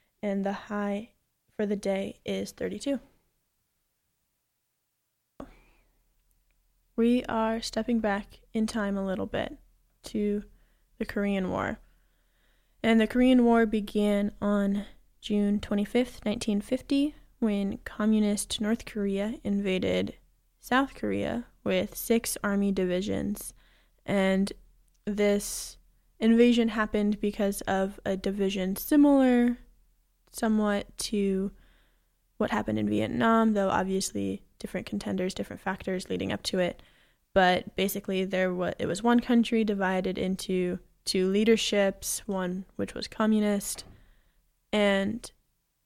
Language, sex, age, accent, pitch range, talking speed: English, female, 10-29, American, 195-225 Hz, 110 wpm